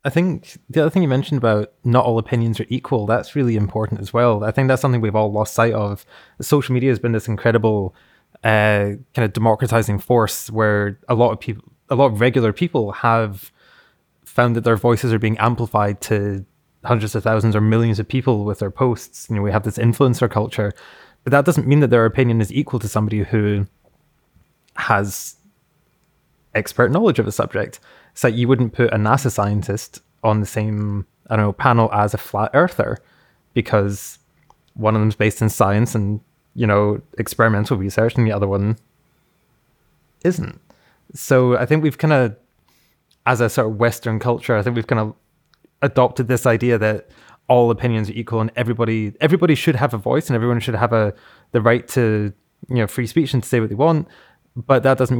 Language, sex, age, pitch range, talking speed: English, male, 20-39, 110-125 Hz, 195 wpm